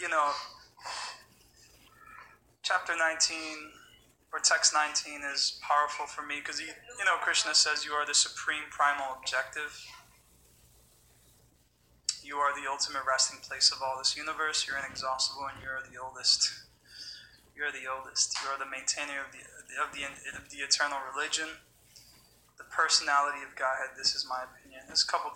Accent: American